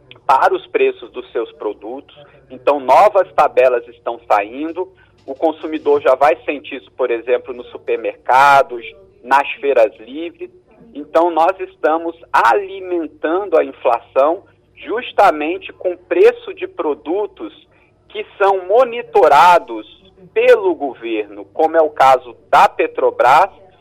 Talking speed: 115 wpm